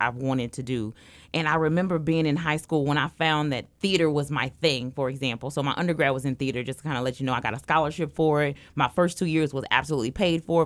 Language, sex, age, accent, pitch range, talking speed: English, female, 30-49, American, 135-170 Hz, 270 wpm